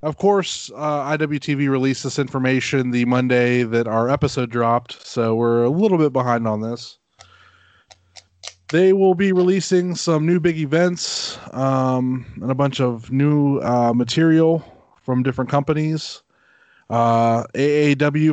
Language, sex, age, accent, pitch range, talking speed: English, male, 20-39, American, 120-145 Hz, 140 wpm